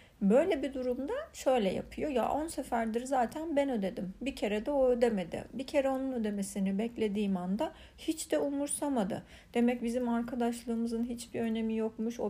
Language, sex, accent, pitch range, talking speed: Turkish, female, native, 205-255 Hz, 155 wpm